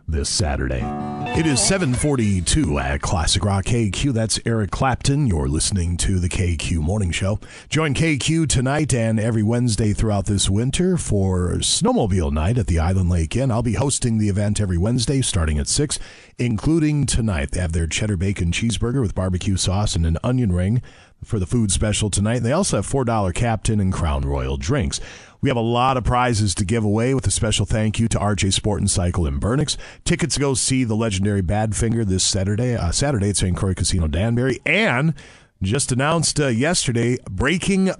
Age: 40-59